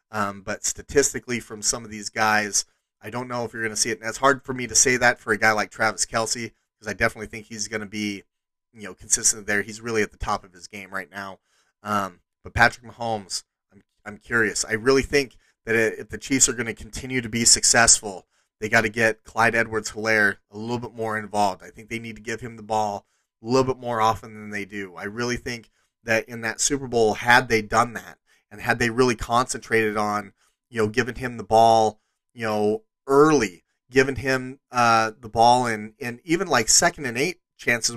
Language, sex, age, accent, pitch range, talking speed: English, male, 30-49, American, 110-125 Hz, 225 wpm